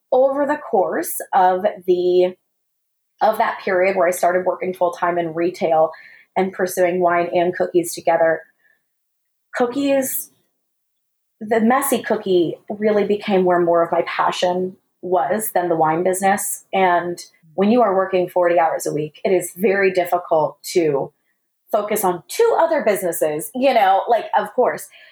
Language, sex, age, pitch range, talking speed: English, female, 20-39, 180-240 Hz, 145 wpm